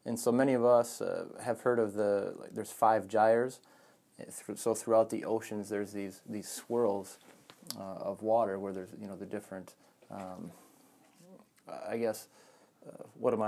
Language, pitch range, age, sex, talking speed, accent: English, 105-120 Hz, 30-49, male, 165 wpm, American